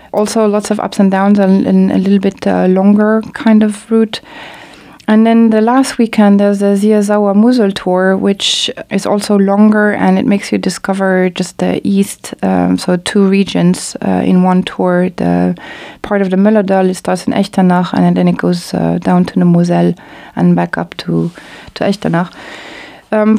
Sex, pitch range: female, 185-215 Hz